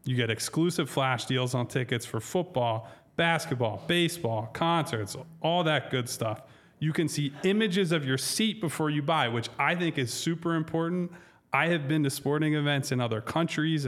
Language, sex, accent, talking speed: English, male, American, 175 wpm